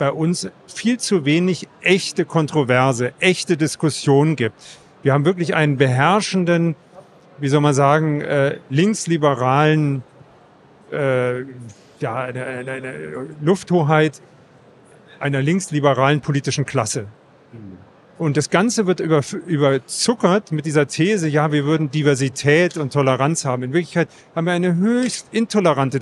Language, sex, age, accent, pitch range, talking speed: German, male, 40-59, German, 135-175 Hz, 110 wpm